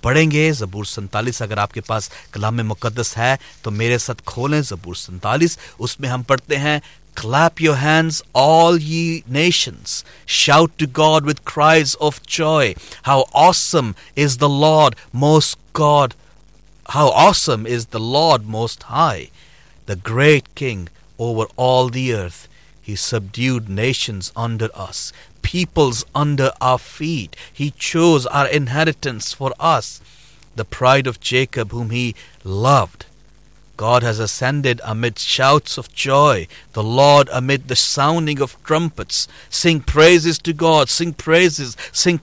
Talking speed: 110 wpm